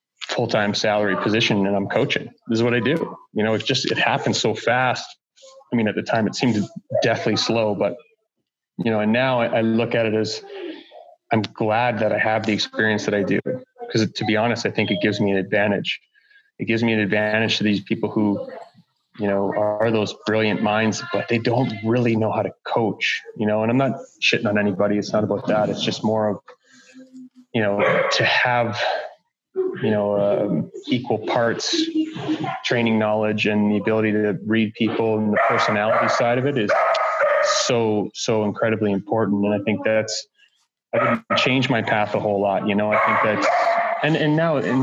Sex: male